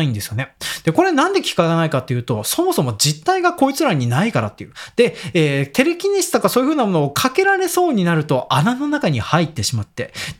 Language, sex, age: Japanese, male, 20-39